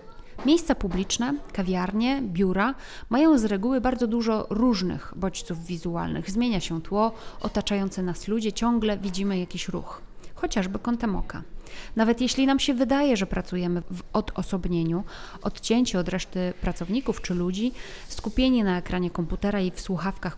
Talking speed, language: 140 wpm, Polish